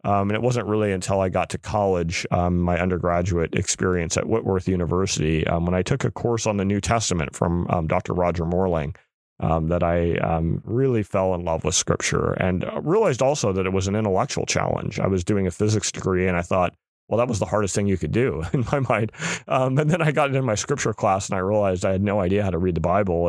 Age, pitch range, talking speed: 30-49, 85-110 Hz, 235 wpm